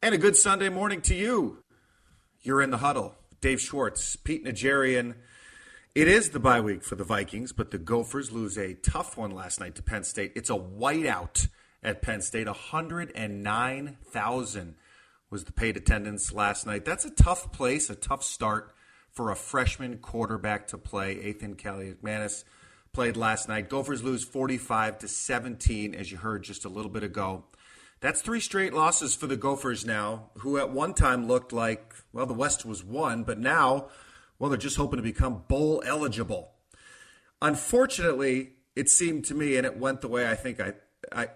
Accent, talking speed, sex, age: American, 175 wpm, male, 40-59